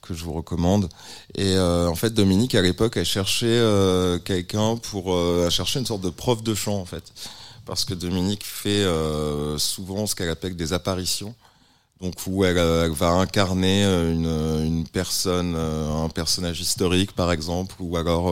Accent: French